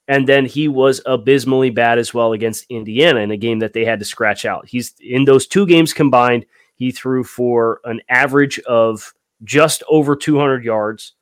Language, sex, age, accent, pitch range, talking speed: English, male, 30-49, American, 115-145 Hz, 185 wpm